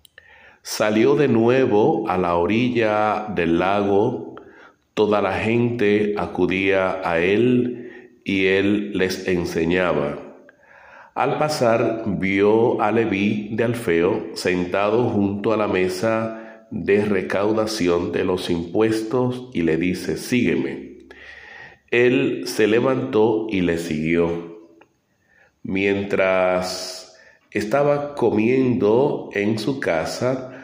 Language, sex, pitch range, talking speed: English, male, 90-115 Hz, 100 wpm